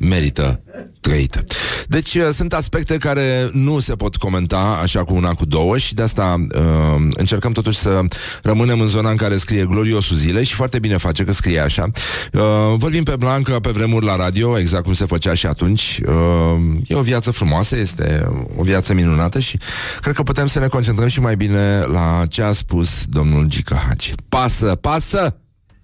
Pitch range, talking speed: 90-120 Hz, 175 wpm